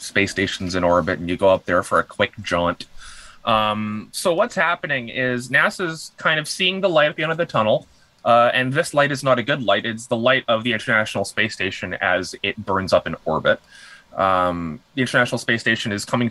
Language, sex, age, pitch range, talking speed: English, male, 20-39, 90-125 Hz, 220 wpm